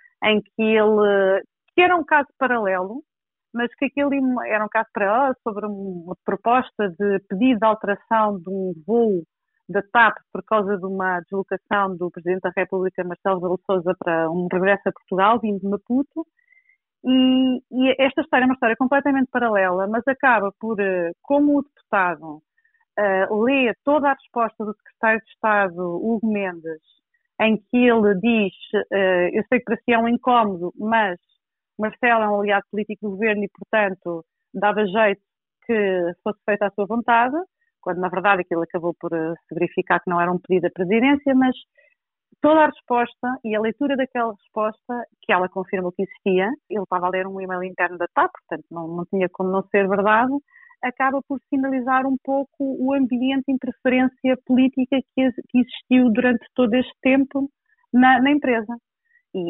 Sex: female